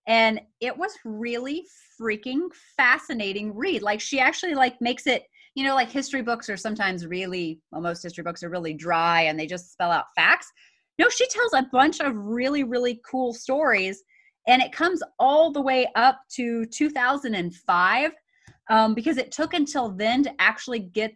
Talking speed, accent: 175 wpm, American